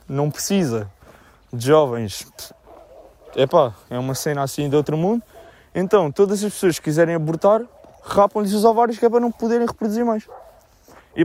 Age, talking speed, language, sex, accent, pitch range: 20-39, 160 wpm, Portuguese, male, Brazilian, 125-180 Hz